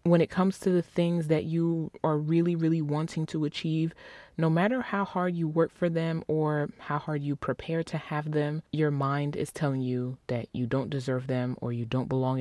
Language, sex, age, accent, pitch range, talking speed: English, female, 20-39, American, 130-165 Hz, 215 wpm